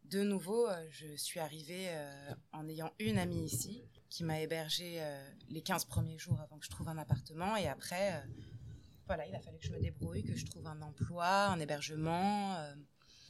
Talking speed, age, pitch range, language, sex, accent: 200 wpm, 20-39, 150-190 Hz, French, female, French